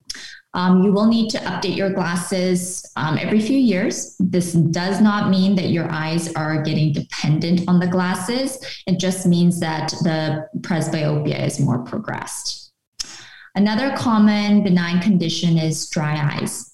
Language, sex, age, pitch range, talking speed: English, female, 20-39, 160-190 Hz, 145 wpm